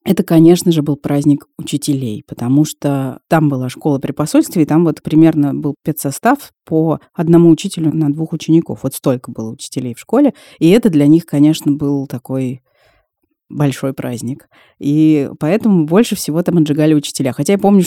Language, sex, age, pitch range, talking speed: Russian, female, 30-49, 145-175 Hz, 170 wpm